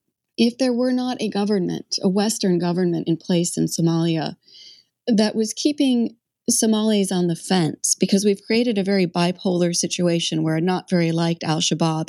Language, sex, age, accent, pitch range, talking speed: English, female, 30-49, American, 175-225 Hz, 165 wpm